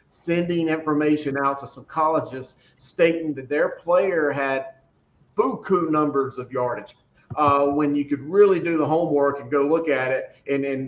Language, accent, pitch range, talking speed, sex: English, American, 140-160 Hz, 165 wpm, male